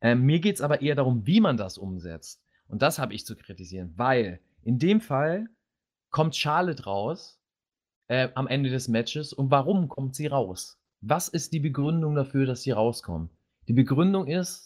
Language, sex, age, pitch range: German, male, 30-49, 120-165 Hz